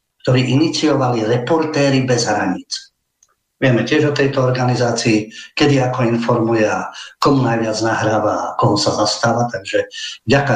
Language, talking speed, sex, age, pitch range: Slovak, 120 wpm, male, 50-69, 115-140 Hz